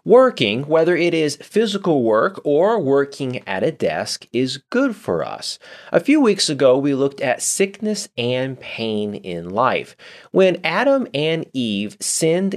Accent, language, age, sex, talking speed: American, English, 30-49, male, 155 wpm